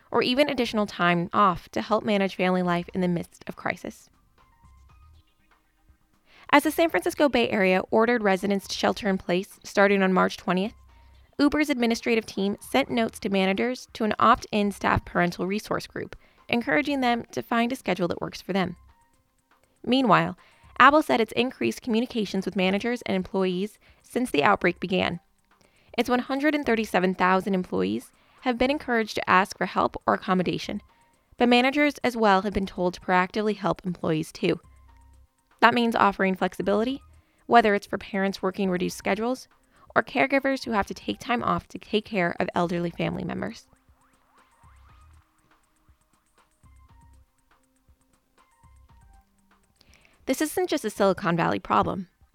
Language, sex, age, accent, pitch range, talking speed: English, female, 20-39, American, 180-240 Hz, 145 wpm